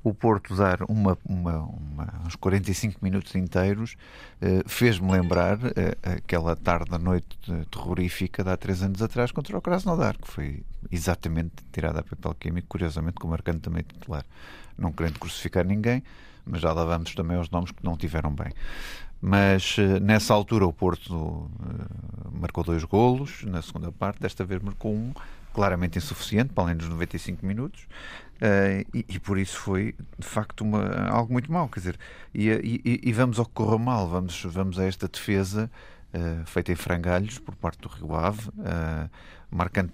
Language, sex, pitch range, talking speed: Portuguese, male, 85-100 Hz, 155 wpm